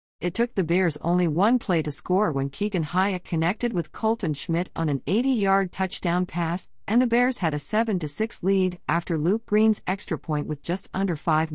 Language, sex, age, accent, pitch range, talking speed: English, female, 50-69, American, 145-190 Hz, 190 wpm